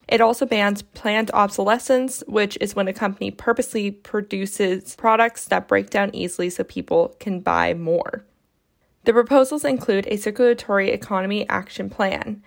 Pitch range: 190-235 Hz